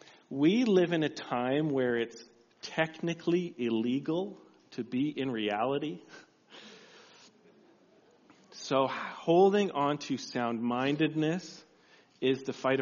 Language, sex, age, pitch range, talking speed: English, male, 40-59, 135-195 Hz, 105 wpm